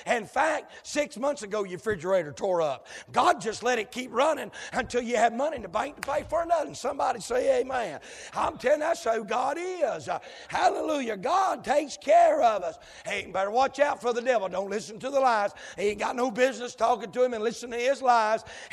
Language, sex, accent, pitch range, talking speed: English, male, American, 215-255 Hz, 220 wpm